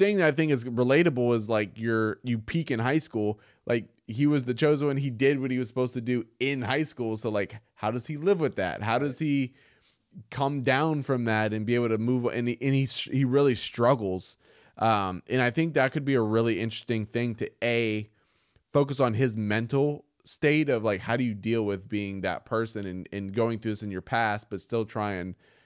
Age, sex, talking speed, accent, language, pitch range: 20-39, male, 230 wpm, American, English, 100-130 Hz